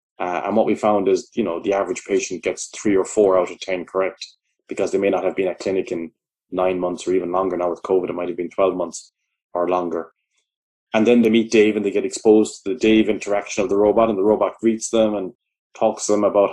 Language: English